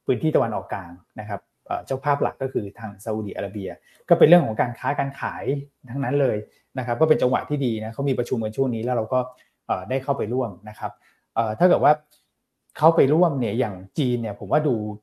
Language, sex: Thai, male